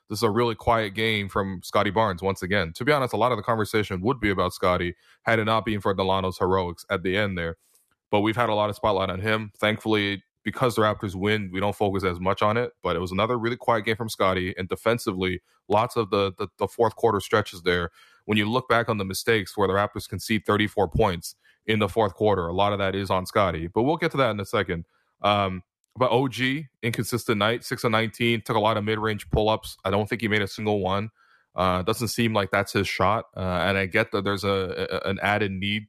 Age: 20-39